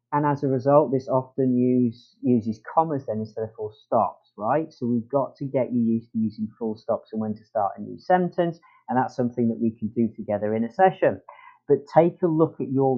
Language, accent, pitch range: English, British, 115-150 Hz